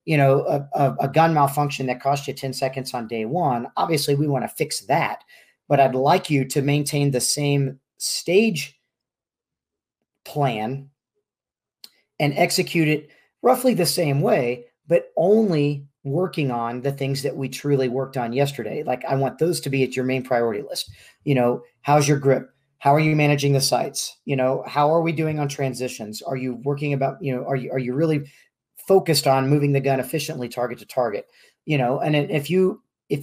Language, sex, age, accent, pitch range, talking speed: English, male, 40-59, American, 130-155 Hz, 190 wpm